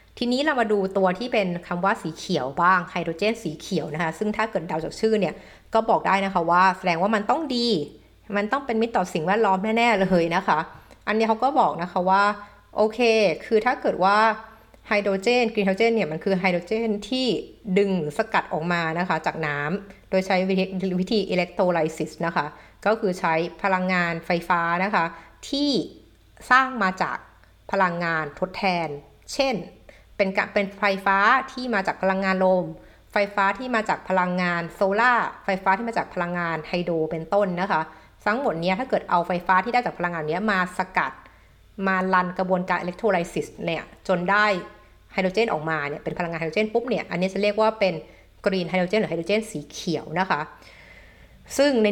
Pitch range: 175-215 Hz